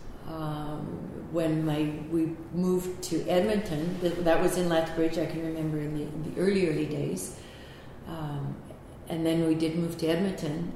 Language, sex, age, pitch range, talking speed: English, female, 60-79, 150-170 Hz, 160 wpm